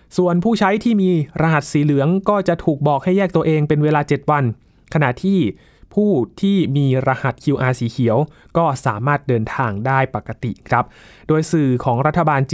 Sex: male